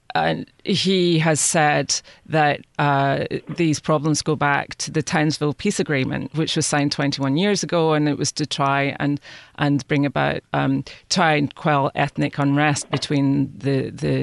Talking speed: 170 wpm